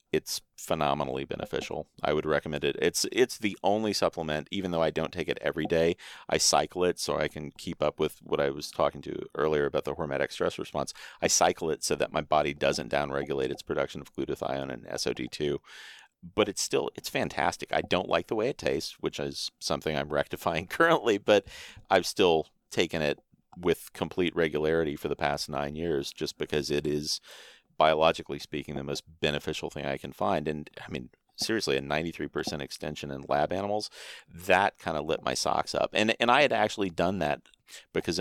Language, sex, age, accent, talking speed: English, male, 40-59, American, 195 wpm